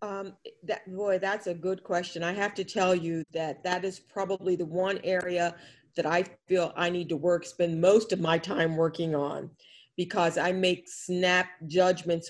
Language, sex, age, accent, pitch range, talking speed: English, female, 50-69, American, 175-205 Hz, 185 wpm